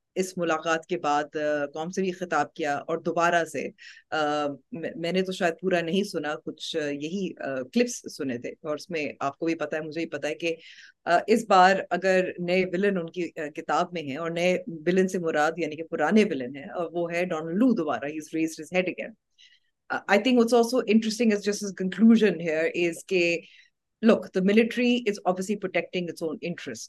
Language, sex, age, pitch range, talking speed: Urdu, female, 30-49, 155-185 Hz, 65 wpm